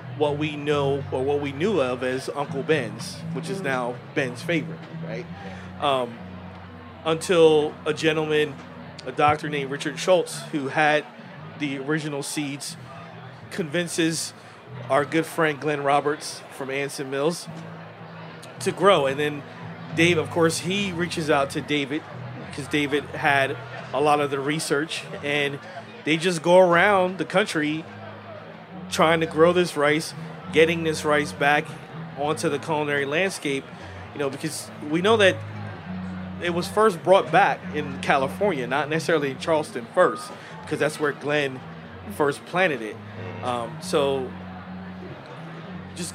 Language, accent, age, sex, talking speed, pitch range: English, American, 30-49, male, 140 wpm, 135-160 Hz